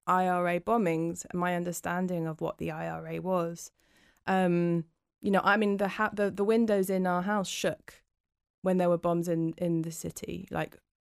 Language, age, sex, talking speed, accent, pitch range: English, 20-39, female, 175 wpm, British, 180-205 Hz